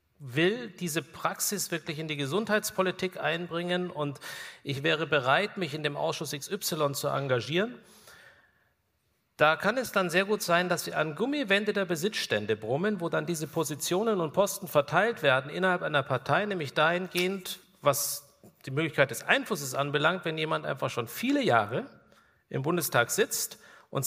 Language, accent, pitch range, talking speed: German, German, 145-185 Hz, 155 wpm